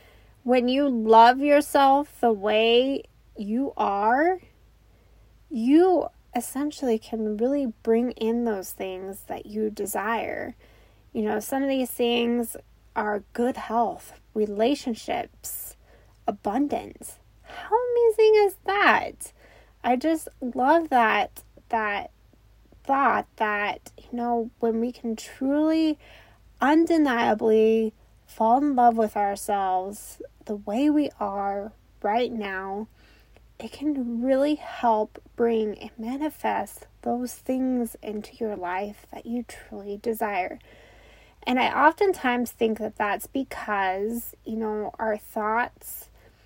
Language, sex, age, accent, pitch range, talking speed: English, female, 10-29, American, 215-260 Hz, 110 wpm